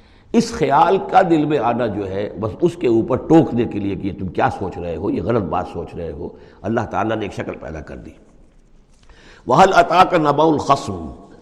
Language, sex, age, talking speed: Urdu, male, 60-79, 205 wpm